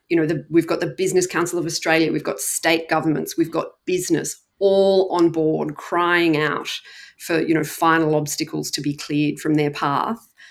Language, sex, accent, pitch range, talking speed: English, female, Australian, 155-185 Hz, 185 wpm